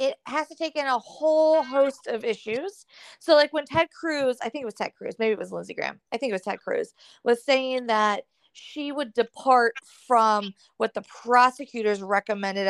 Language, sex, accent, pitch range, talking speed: English, female, American, 215-275 Hz, 205 wpm